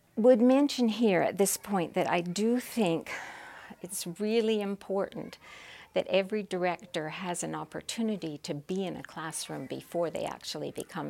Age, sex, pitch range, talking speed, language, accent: 50-69, female, 165-210 Hz, 150 wpm, English, American